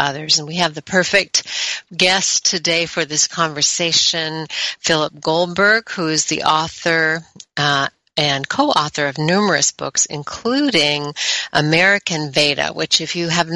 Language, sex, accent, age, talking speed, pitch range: English, female, American, 60-79, 135 wpm, 145-175 Hz